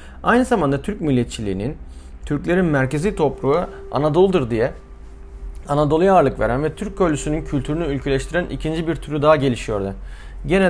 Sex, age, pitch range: male, 30-49, 120-160 Hz